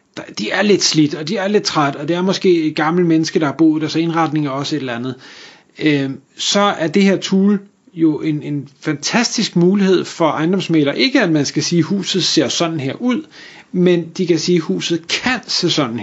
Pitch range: 145-180 Hz